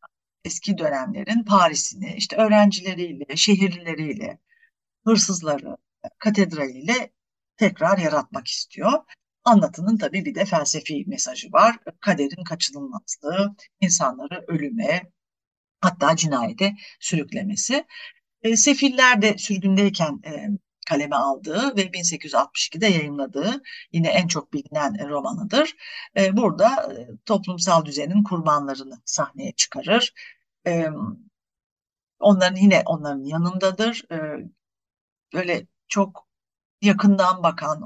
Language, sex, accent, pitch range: Turkish, female, native, 160-220 Hz